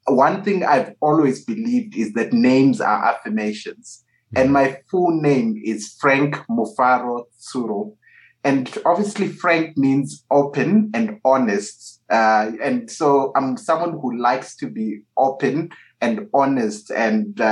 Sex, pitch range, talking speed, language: male, 130-205 Hz, 130 wpm, English